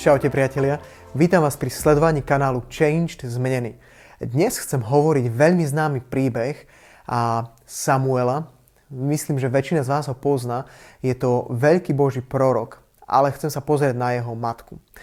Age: 20-39